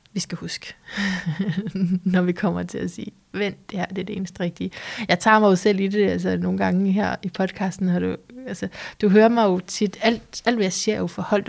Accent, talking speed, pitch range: native, 225 wpm, 180-210 Hz